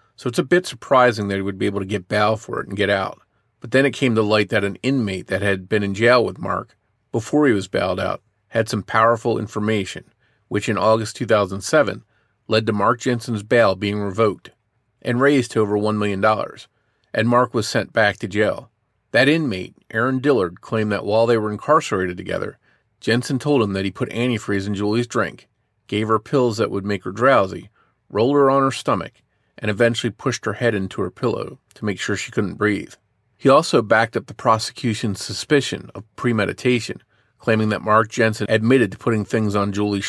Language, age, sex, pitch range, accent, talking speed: English, 40-59, male, 105-120 Hz, American, 200 wpm